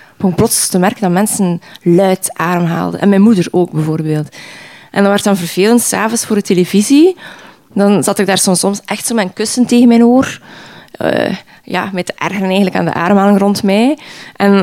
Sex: female